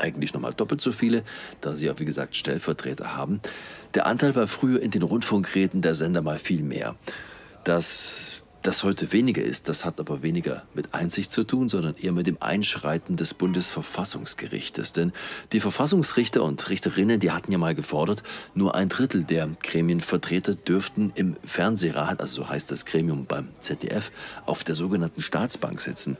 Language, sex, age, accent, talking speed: German, male, 40-59, German, 170 wpm